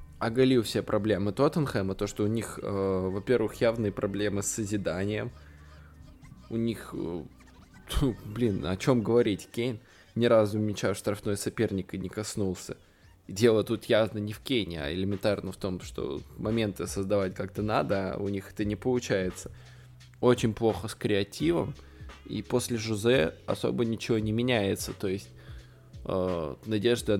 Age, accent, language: 20-39, native, Russian